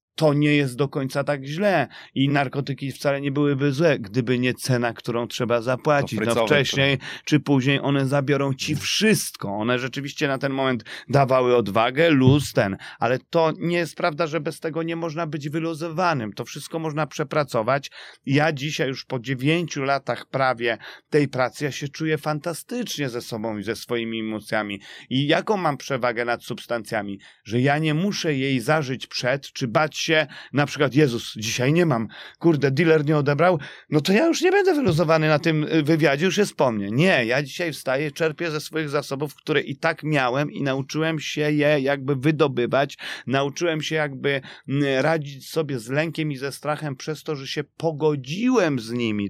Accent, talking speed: native, 180 wpm